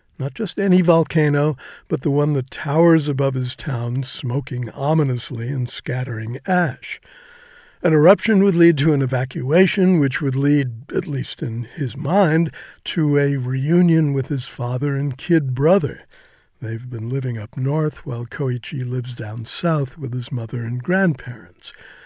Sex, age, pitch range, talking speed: male, 60-79, 130-170 Hz, 150 wpm